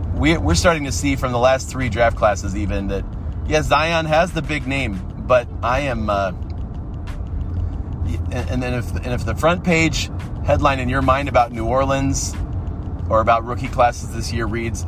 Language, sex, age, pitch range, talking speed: English, male, 30-49, 90-120 Hz, 180 wpm